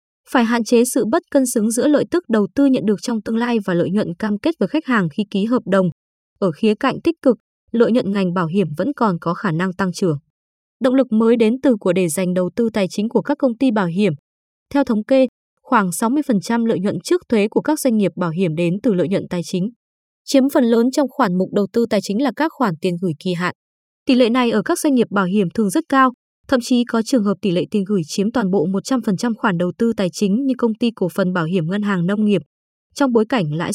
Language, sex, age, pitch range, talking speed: Vietnamese, female, 20-39, 195-255 Hz, 260 wpm